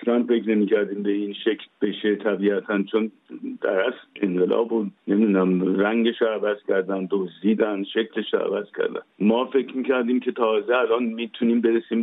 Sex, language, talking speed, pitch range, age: male, Persian, 145 wpm, 105-125 Hz, 50-69